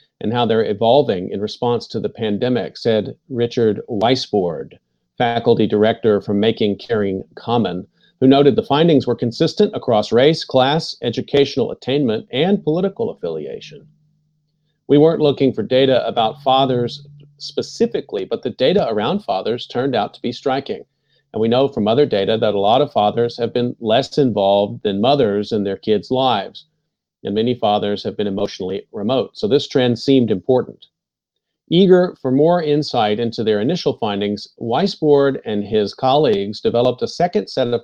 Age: 40-59